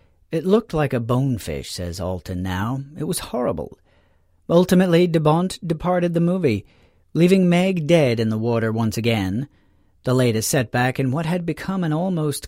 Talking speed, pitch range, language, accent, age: 165 wpm, 105-160 Hz, English, American, 40-59